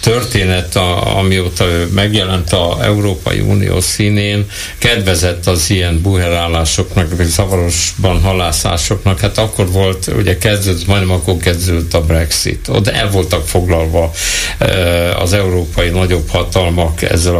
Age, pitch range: 60-79, 90-110 Hz